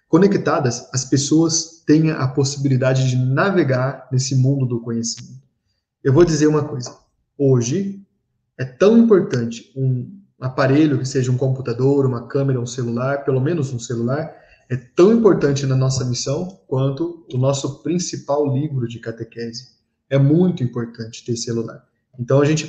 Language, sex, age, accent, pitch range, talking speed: Portuguese, male, 20-39, Brazilian, 125-150 Hz, 150 wpm